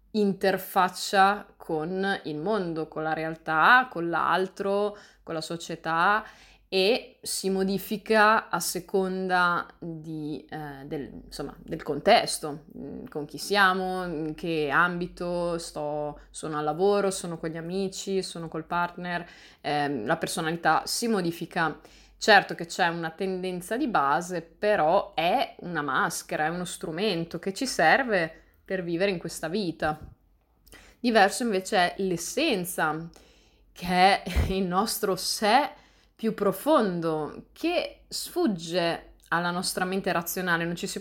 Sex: female